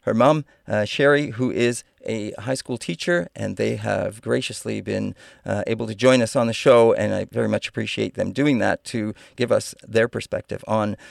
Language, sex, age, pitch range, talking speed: English, male, 40-59, 110-125 Hz, 200 wpm